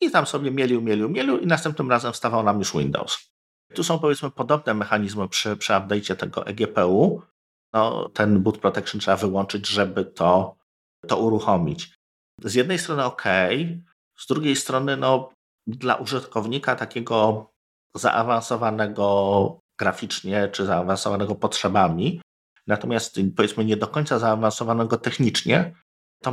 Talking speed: 130 wpm